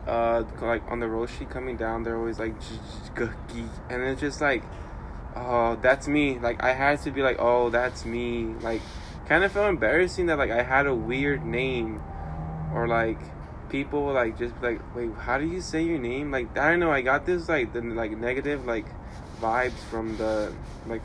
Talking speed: 195 wpm